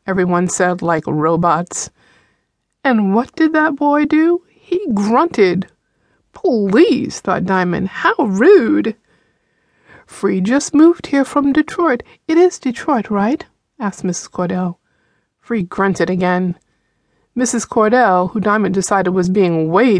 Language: English